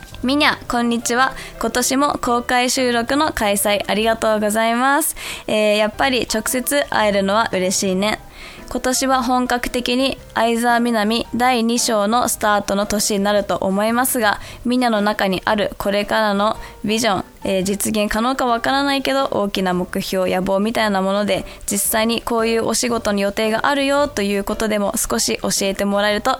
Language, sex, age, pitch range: Japanese, female, 20-39, 195-245 Hz